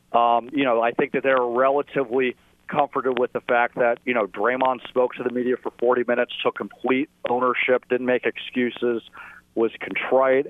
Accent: American